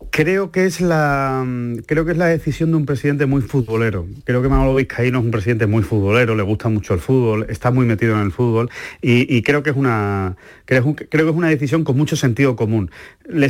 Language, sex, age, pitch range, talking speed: Spanish, male, 30-49, 105-135 Hz, 225 wpm